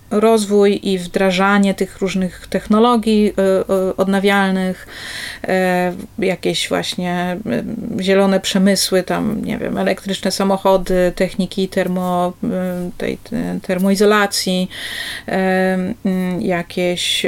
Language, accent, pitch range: Polish, native, 185-215 Hz